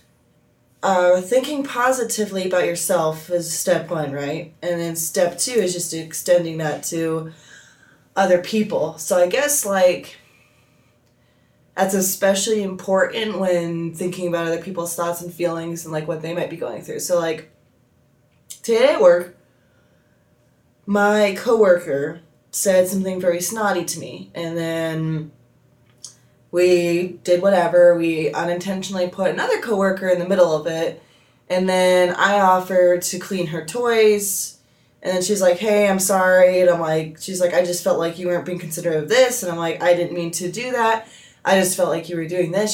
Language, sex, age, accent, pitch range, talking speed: English, female, 20-39, American, 165-195 Hz, 165 wpm